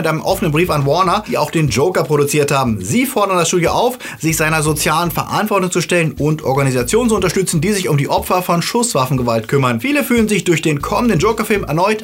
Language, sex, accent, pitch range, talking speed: German, male, German, 150-210 Hz, 215 wpm